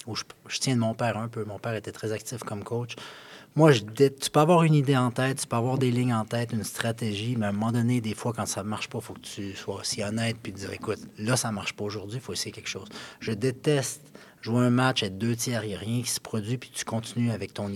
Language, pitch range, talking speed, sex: French, 105-125 Hz, 295 wpm, male